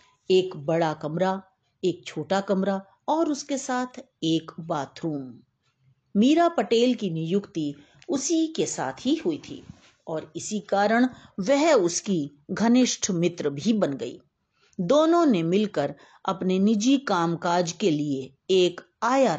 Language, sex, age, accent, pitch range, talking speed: Hindi, female, 50-69, native, 165-245 Hz, 125 wpm